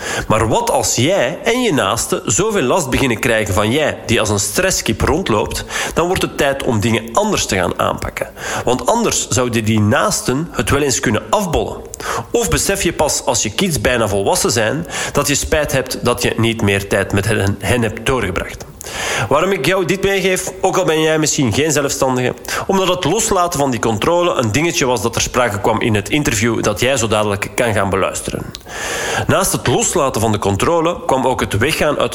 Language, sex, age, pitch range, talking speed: Dutch, male, 40-59, 110-160 Hz, 200 wpm